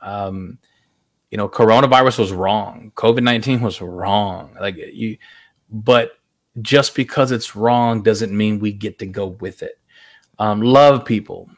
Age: 30-49